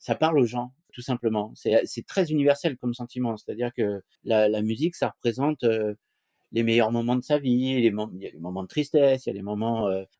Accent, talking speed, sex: French, 230 wpm, male